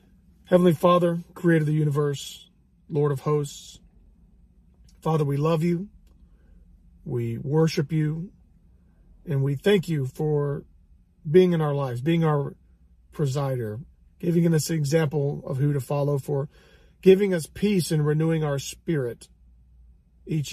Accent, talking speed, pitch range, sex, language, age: American, 130 wpm, 120-160 Hz, male, English, 40-59